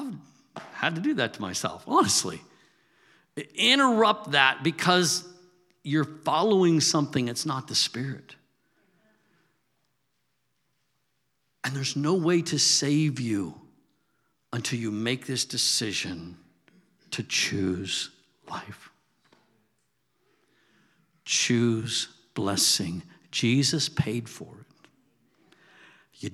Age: 60-79